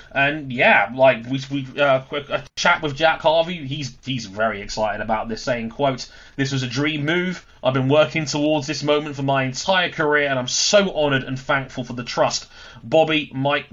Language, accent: English, British